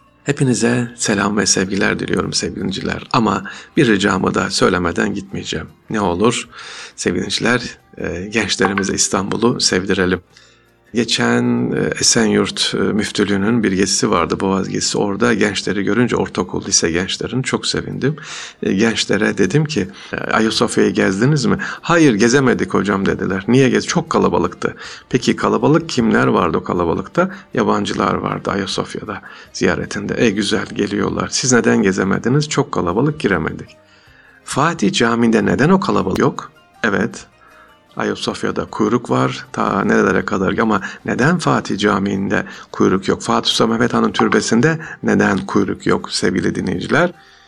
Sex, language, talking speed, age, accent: male, Turkish, 120 wpm, 50-69, native